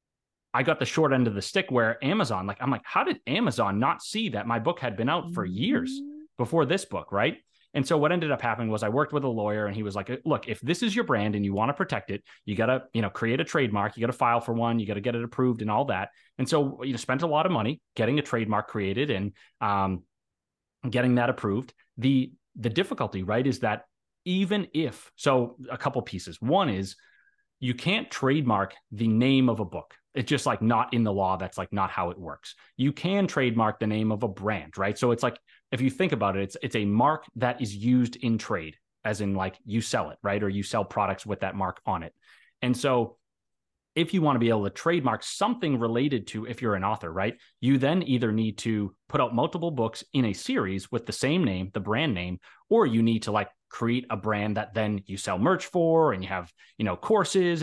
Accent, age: American, 30-49